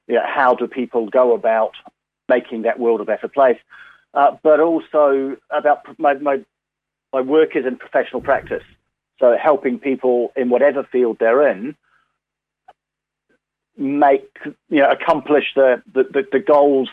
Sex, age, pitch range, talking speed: male, 50-69, 120-145 Hz, 150 wpm